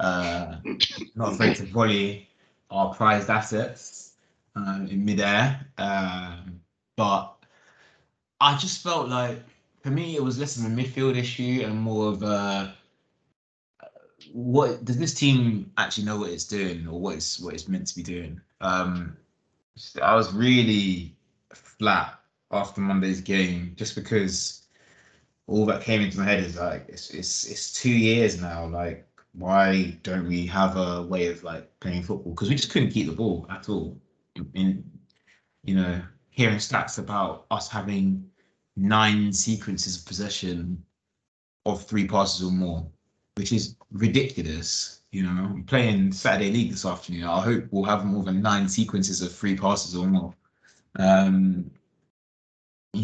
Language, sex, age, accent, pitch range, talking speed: English, male, 20-39, British, 90-110 Hz, 155 wpm